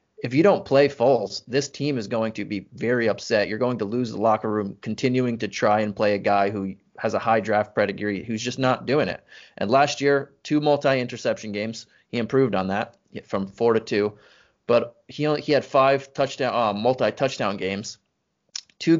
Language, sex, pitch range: English, male, 110-135 Hz